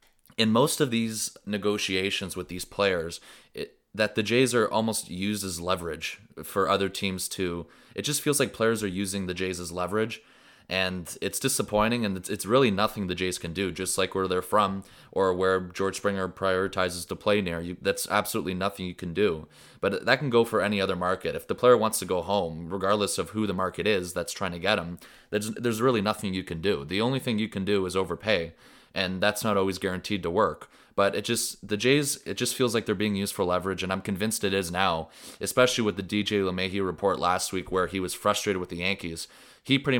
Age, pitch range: 20-39, 90-105 Hz